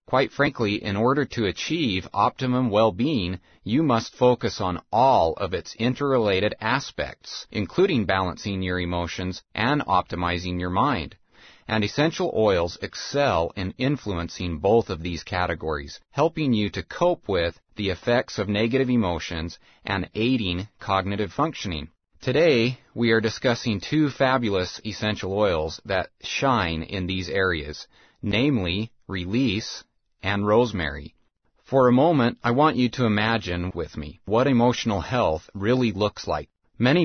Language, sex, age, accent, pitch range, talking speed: English, male, 30-49, American, 95-125 Hz, 135 wpm